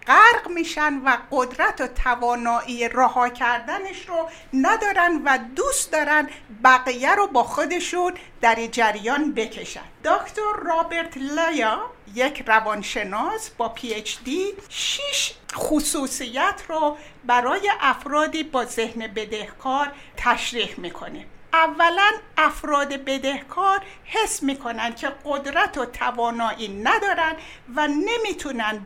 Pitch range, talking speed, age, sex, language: 245-350 Hz, 105 wpm, 60-79, female, Persian